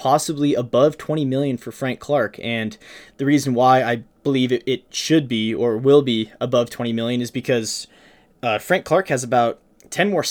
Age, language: 20-39, English